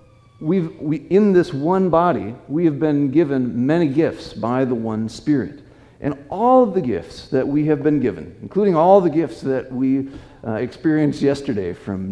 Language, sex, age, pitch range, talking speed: English, male, 50-69, 120-165 Hz, 180 wpm